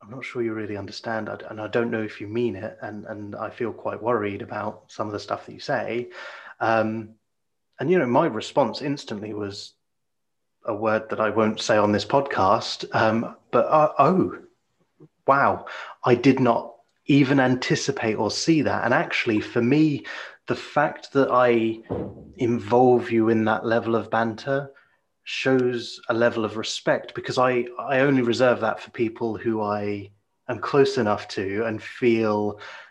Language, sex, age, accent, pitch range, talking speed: English, male, 30-49, British, 105-125 Hz, 170 wpm